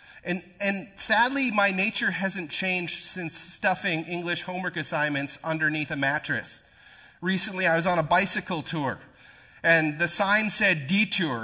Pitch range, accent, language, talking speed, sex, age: 140-185 Hz, American, English, 140 wpm, male, 30-49